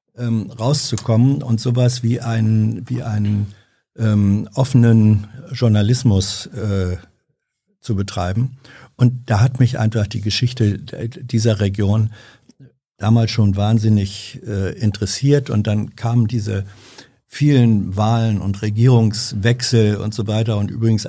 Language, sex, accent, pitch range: German, male, German, 105-120 Hz